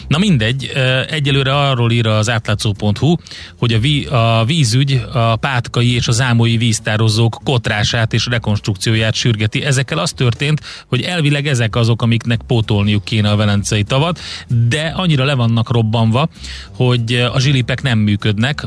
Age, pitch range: 30-49, 110-130 Hz